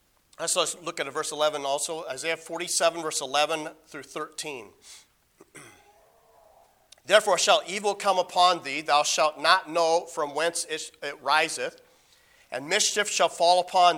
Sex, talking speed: male, 135 wpm